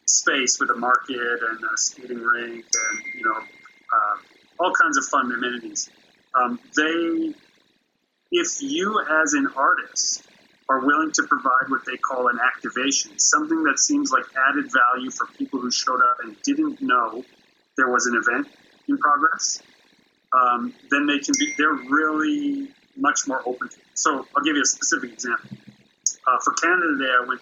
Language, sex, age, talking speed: English, male, 30-49, 165 wpm